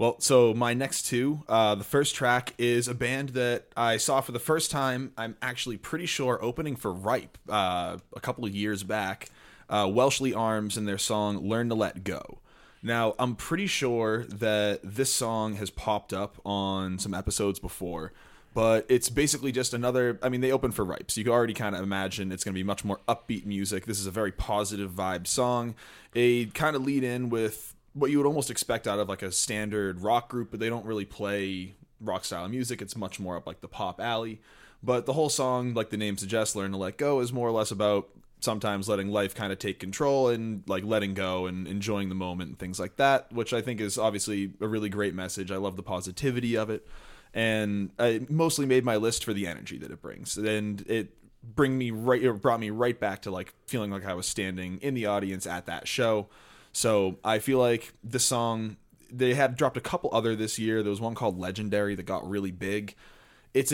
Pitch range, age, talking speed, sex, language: 100-125 Hz, 20-39, 220 wpm, male, English